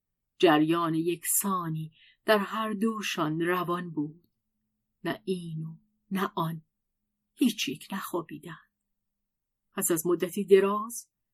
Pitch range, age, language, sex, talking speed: 165-215 Hz, 50-69, Persian, female, 100 wpm